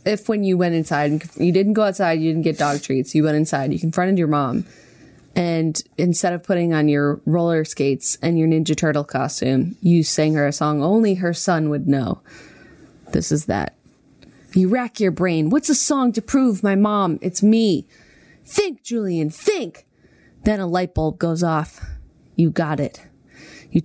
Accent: American